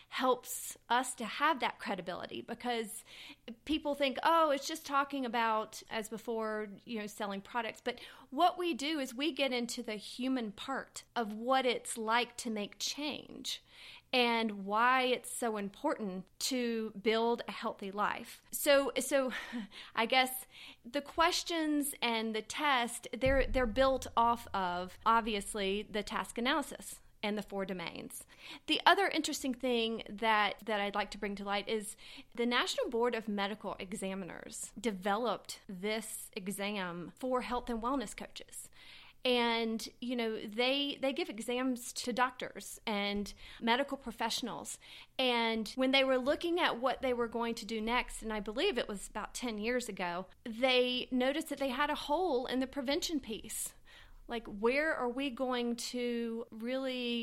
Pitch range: 215-260 Hz